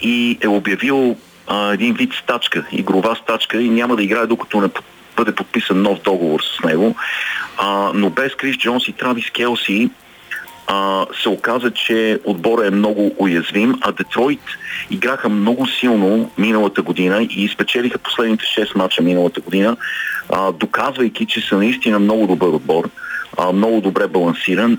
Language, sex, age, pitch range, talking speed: Bulgarian, male, 40-59, 100-125 Hz, 155 wpm